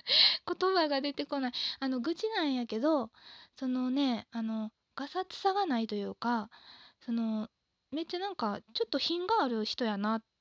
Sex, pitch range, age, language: female, 215-300 Hz, 20-39, Japanese